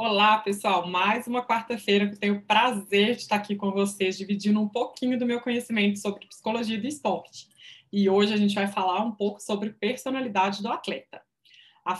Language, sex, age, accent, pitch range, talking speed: Portuguese, female, 20-39, Brazilian, 195-235 Hz, 185 wpm